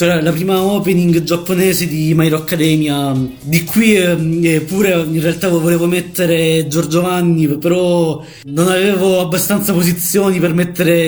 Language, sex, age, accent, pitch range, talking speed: Italian, male, 20-39, native, 155-170 Hz, 120 wpm